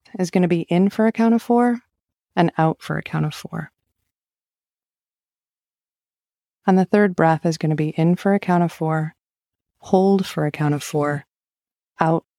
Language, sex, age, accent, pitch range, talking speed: English, female, 30-49, American, 150-180 Hz, 185 wpm